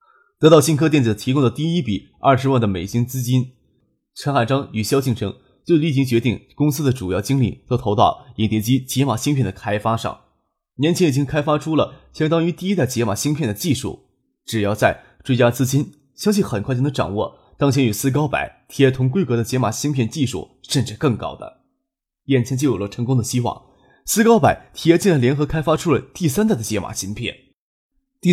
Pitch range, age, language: 115-150 Hz, 20-39, Chinese